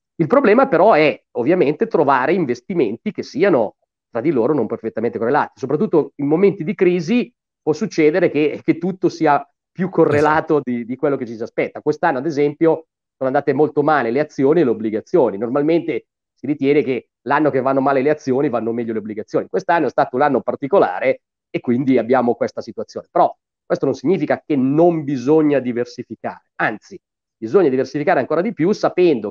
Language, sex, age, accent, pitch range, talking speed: Italian, male, 40-59, native, 130-175 Hz, 180 wpm